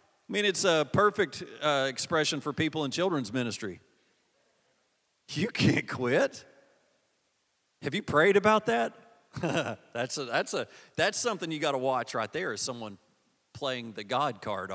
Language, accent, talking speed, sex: English, American, 155 wpm, male